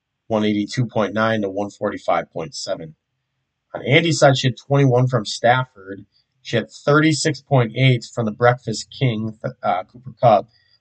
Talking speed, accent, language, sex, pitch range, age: 115 wpm, American, English, male, 110-135 Hz, 30-49